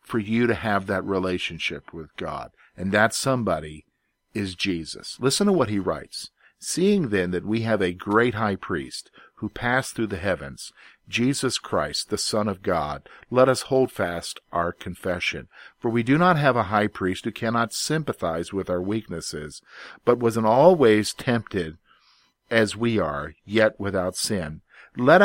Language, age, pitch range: English, 50-69, 95-120 Hz